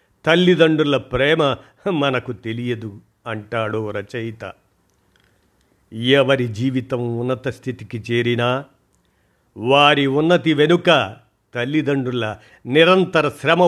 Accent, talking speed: native, 75 wpm